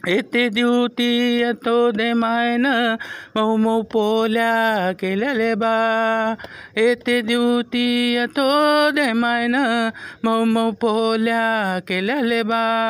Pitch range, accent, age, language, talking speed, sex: 180-235 Hz, native, 50-69, Marathi, 80 wpm, male